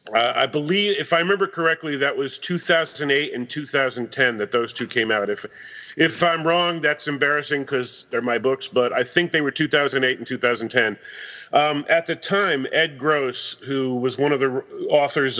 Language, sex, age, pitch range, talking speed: French, male, 40-59, 125-160 Hz, 185 wpm